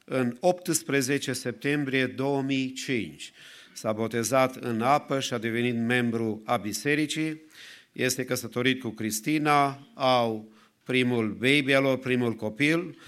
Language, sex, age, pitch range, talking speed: English, male, 50-69, 115-140 Hz, 105 wpm